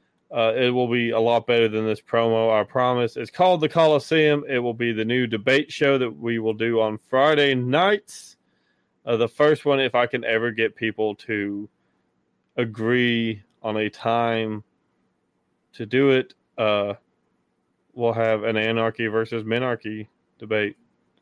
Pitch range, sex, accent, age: 110-145 Hz, male, American, 20-39